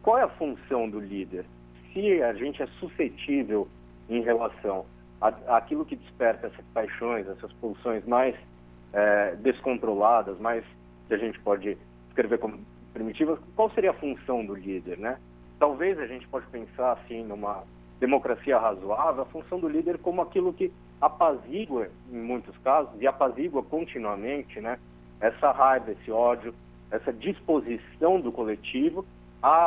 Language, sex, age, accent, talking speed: Portuguese, male, 50-69, Brazilian, 145 wpm